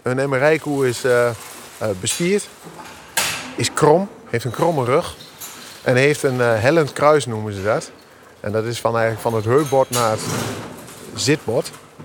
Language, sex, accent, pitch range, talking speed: Dutch, male, Dutch, 115-145 Hz, 155 wpm